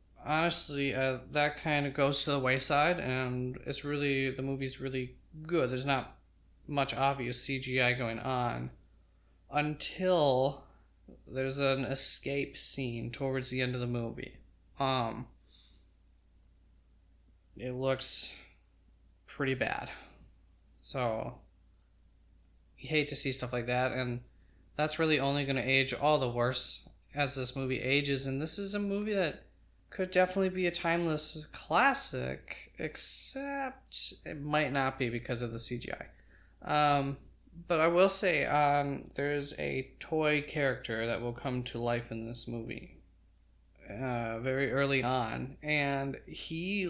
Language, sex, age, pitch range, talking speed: English, male, 20-39, 120-150 Hz, 135 wpm